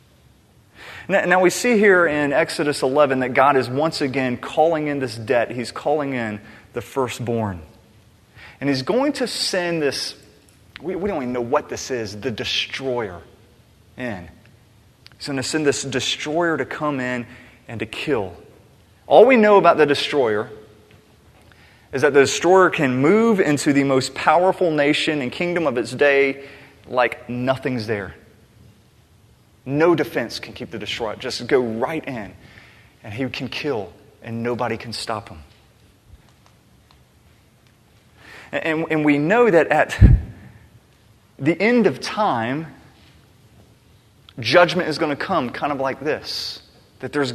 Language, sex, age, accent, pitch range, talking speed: English, male, 30-49, American, 115-155 Hz, 145 wpm